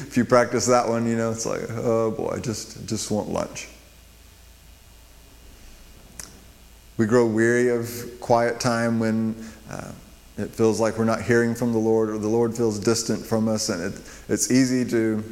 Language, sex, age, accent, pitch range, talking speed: English, male, 30-49, American, 100-120 Hz, 175 wpm